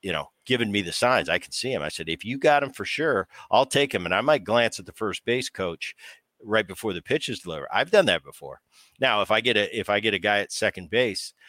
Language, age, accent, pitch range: English, 50-69, American, 95-120 Hz